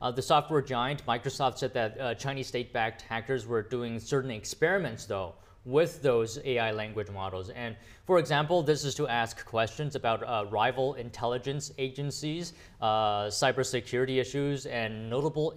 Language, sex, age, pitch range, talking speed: English, male, 20-39, 110-140 Hz, 155 wpm